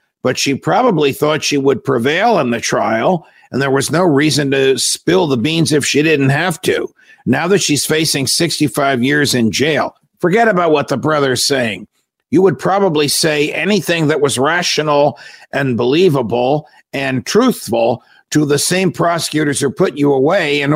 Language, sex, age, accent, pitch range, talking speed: English, male, 50-69, American, 135-160 Hz, 170 wpm